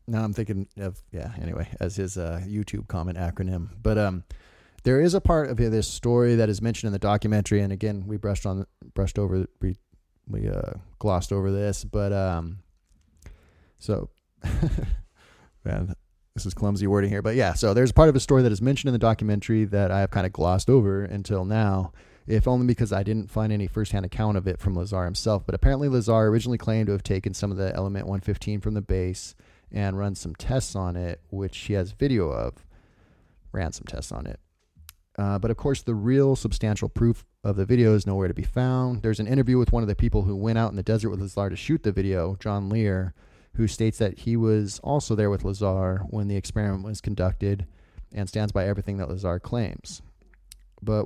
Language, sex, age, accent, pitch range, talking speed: English, male, 20-39, American, 95-110 Hz, 210 wpm